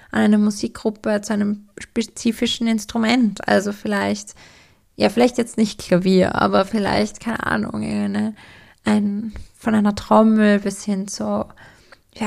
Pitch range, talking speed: 200-220 Hz, 130 wpm